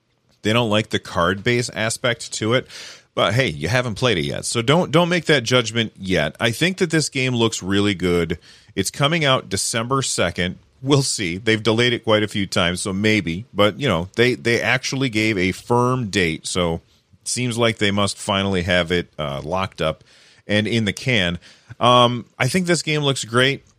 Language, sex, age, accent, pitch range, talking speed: English, male, 30-49, American, 95-120 Hz, 200 wpm